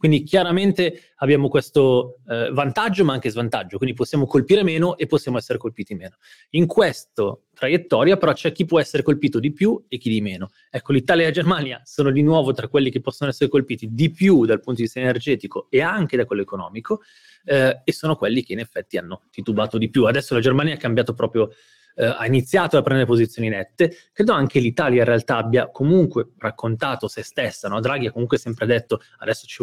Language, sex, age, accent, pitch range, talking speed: Italian, male, 30-49, native, 115-150 Hz, 205 wpm